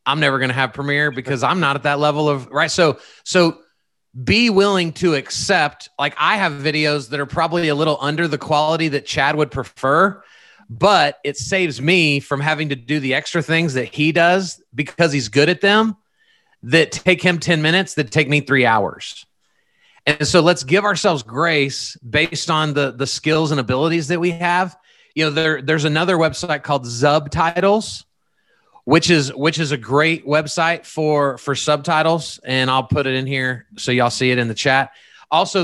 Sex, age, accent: male, 30-49, American